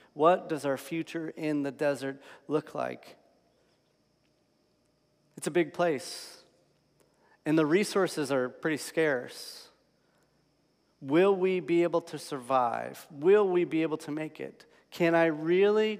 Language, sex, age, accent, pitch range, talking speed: English, male, 40-59, American, 125-165 Hz, 130 wpm